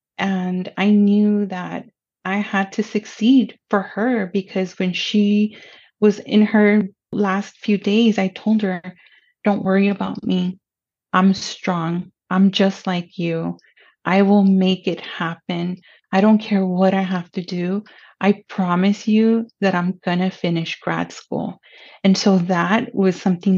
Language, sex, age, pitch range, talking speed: English, female, 30-49, 180-210 Hz, 155 wpm